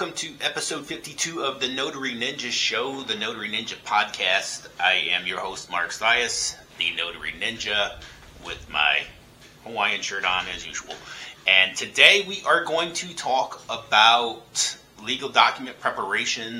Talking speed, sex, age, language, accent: 145 wpm, male, 30-49, English, American